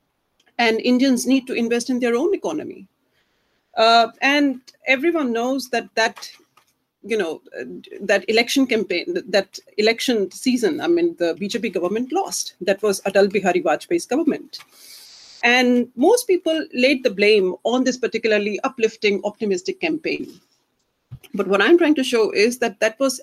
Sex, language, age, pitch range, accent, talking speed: female, English, 40-59, 210-290 Hz, Indian, 150 wpm